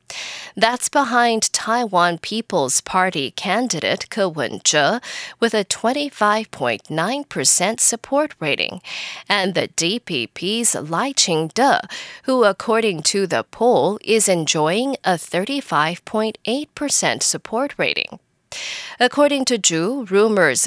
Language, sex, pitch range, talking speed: English, female, 180-265 Hz, 100 wpm